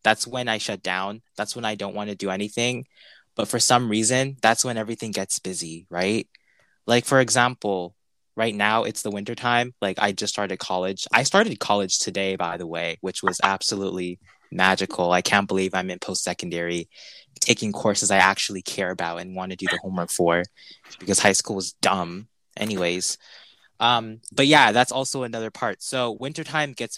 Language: English